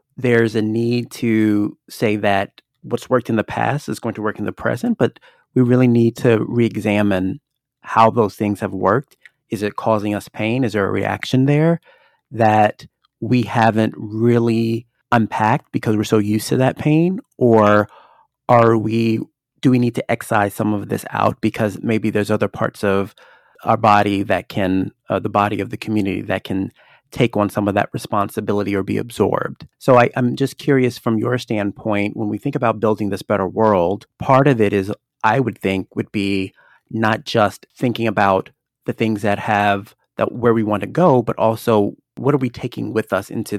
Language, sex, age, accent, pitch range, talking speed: English, male, 30-49, American, 105-125 Hz, 190 wpm